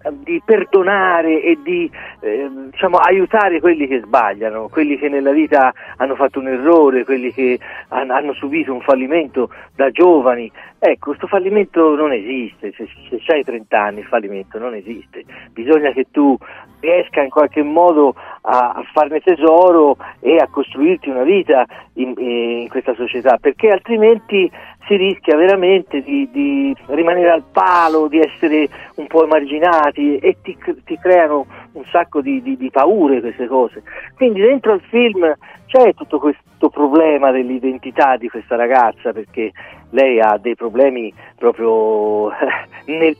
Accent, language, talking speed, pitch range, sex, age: native, Italian, 145 wpm, 130-195 Hz, male, 50-69